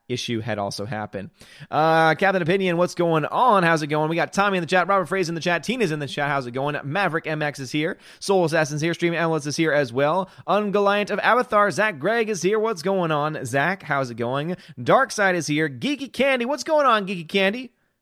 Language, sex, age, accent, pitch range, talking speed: English, male, 30-49, American, 130-195 Hz, 230 wpm